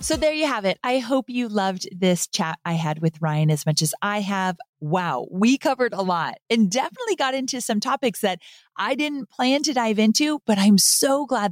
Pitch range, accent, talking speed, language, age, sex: 180-250 Hz, American, 220 wpm, English, 30-49, female